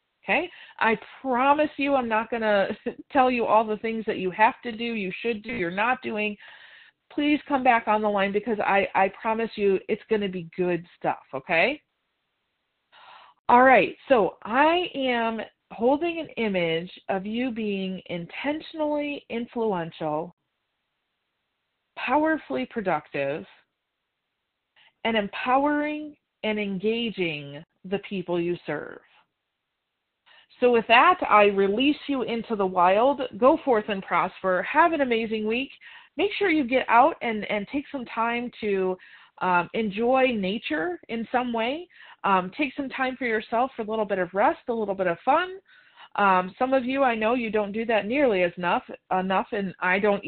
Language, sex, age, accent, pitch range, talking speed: English, female, 40-59, American, 195-265 Hz, 160 wpm